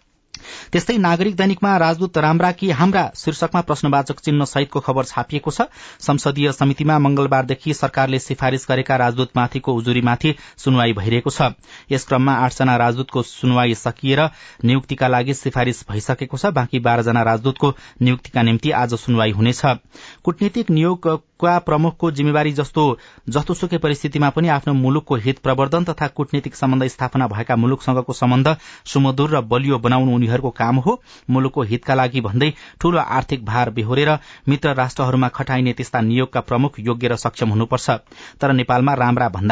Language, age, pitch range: English, 30-49, 120-145 Hz